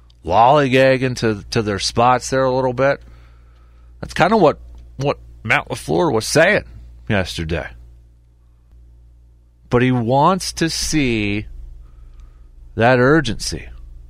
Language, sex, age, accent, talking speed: English, male, 40-59, American, 110 wpm